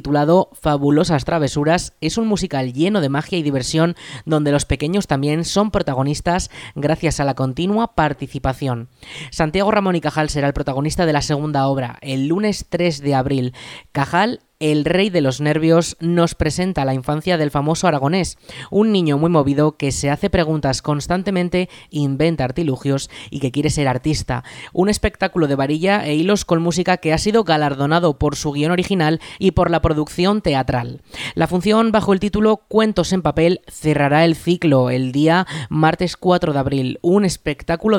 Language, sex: Spanish, female